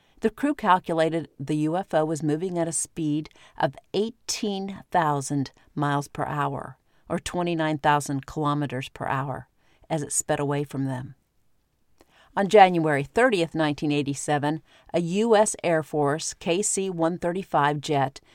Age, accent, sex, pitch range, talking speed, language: 50-69, American, female, 145-185 Hz, 120 wpm, English